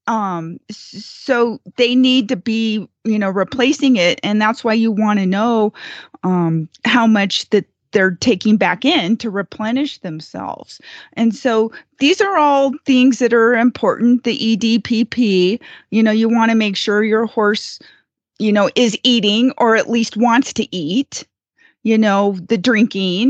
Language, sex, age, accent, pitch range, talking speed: English, female, 30-49, American, 200-245 Hz, 160 wpm